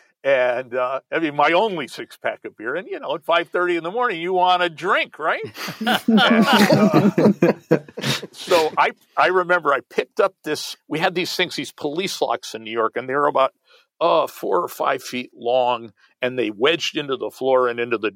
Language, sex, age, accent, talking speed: English, male, 50-69, American, 210 wpm